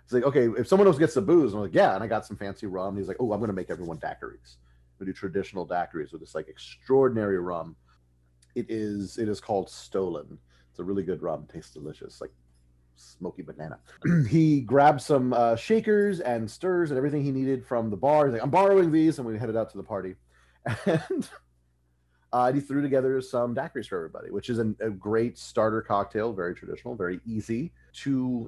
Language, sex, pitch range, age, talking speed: English, male, 85-125 Hz, 30-49, 210 wpm